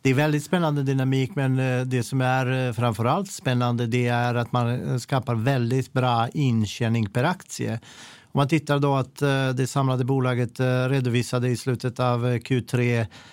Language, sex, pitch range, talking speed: Swedish, male, 115-130 Hz, 155 wpm